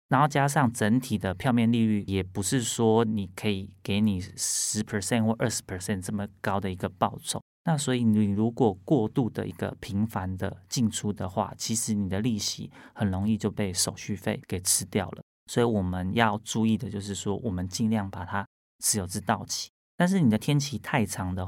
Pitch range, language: 95-115 Hz, Chinese